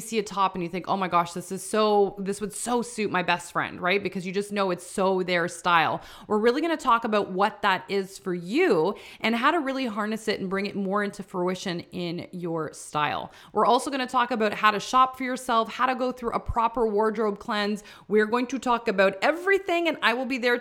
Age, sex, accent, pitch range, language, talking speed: 20-39, female, American, 185-245 Hz, English, 245 wpm